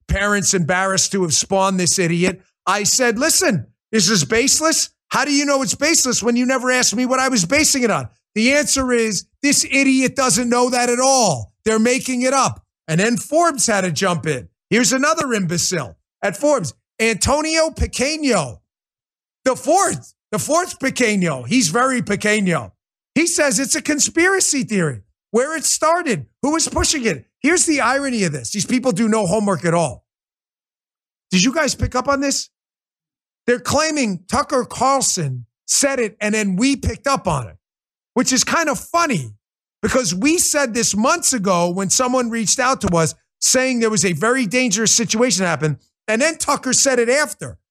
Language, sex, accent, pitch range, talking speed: English, male, American, 190-265 Hz, 180 wpm